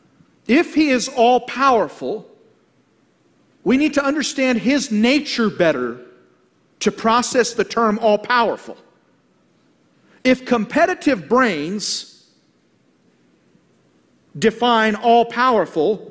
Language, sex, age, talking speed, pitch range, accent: English, male, 50-69, 80 wpm, 175-245 Hz, American